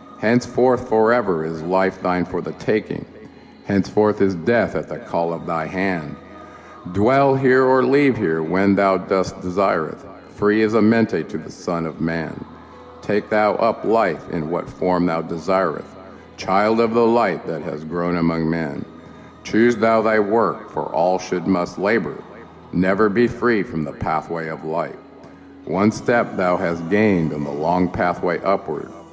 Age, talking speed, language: 50-69, 165 wpm, English